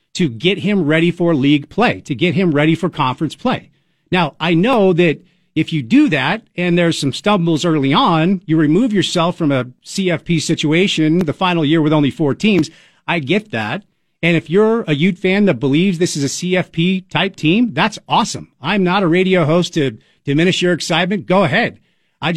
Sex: male